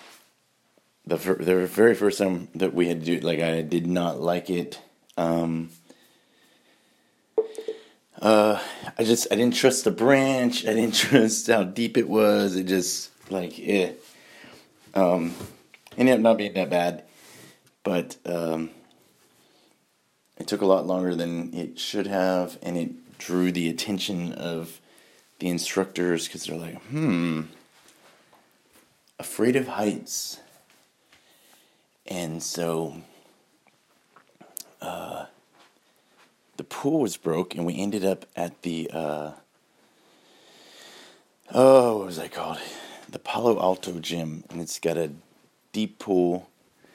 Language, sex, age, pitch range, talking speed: English, male, 30-49, 85-100 Hz, 125 wpm